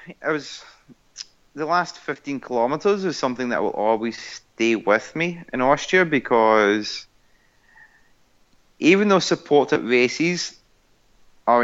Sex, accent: male, British